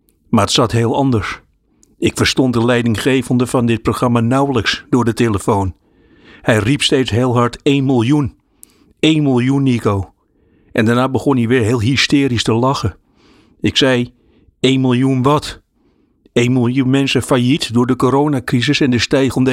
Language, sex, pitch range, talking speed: Dutch, male, 115-135 Hz, 155 wpm